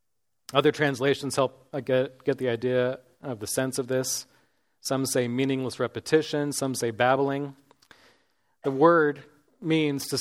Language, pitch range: English, 120-145 Hz